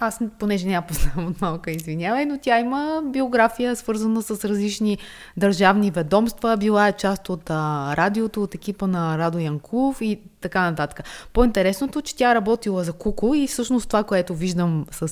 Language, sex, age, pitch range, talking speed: Bulgarian, female, 20-39, 175-225 Hz, 165 wpm